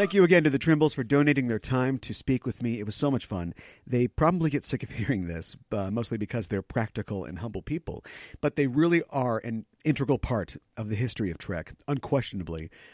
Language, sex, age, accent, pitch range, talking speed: English, male, 40-59, American, 105-145 Hz, 220 wpm